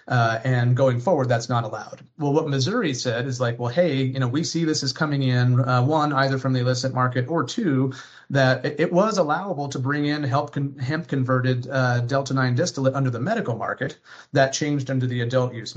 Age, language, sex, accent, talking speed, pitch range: 30-49, English, male, American, 220 wpm, 125-145 Hz